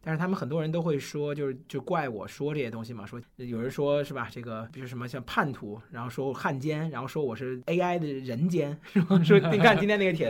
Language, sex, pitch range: Chinese, male, 130-180 Hz